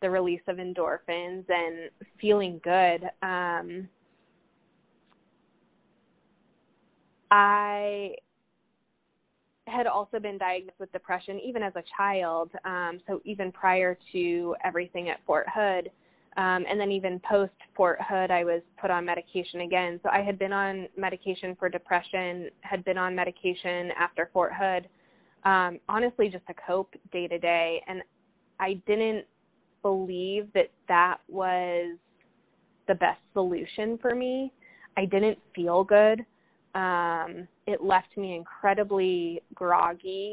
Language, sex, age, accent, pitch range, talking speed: English, female, 20-39, American, 175-195 Hz, 130 wpm